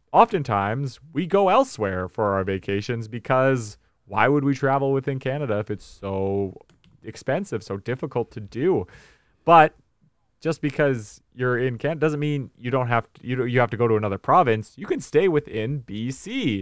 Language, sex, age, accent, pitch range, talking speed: English, male, 30-49, American, 105-145 Hz, 175 wpm